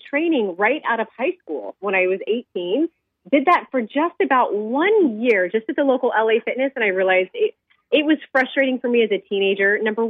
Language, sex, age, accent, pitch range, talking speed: English, female, 30-49, American, 180-260 Hz, 215 wpm